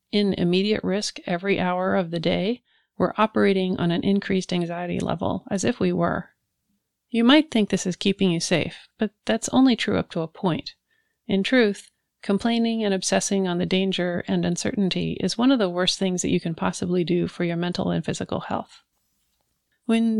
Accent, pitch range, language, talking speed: American, 180-210 Hz, English, 185 wpm